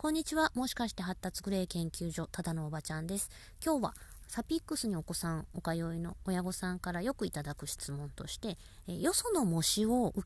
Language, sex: Japanese, female